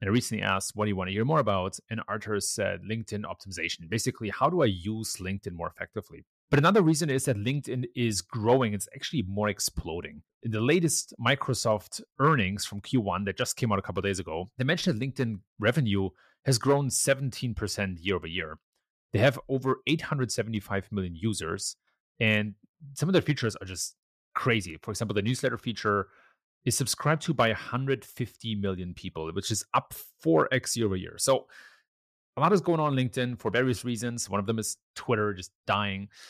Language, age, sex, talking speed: English, 30-49, male, 190 wpm